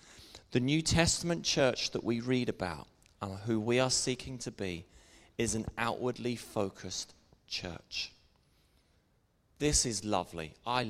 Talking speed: 130 wpm